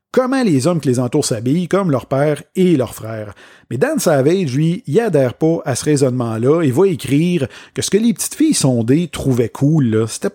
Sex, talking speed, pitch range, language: male, 210 wpm, 125-160 Hz, French